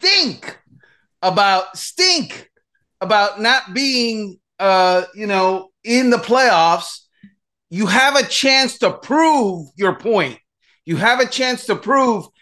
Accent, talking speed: American, 125 wpm